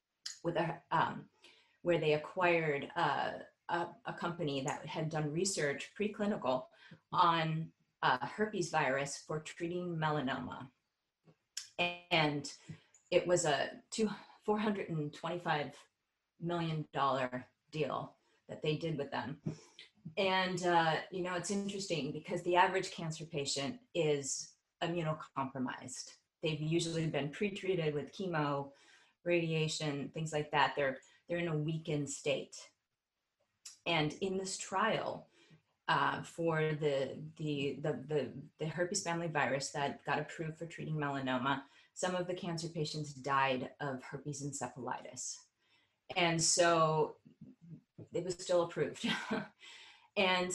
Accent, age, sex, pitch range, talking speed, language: American, 30-49, female, 145-180 Hz, 115 wpm, English